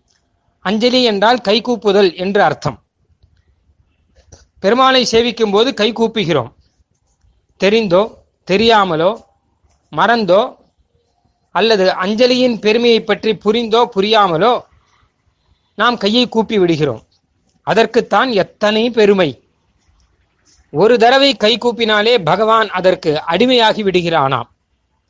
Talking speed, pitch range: 80 wpm, 170-230 Hz